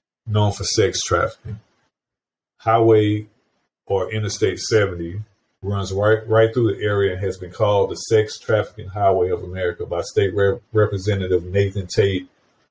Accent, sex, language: American, male, English